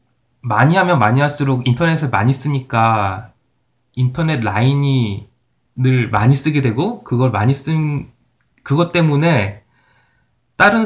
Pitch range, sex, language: 120-160 Hz, male, Korean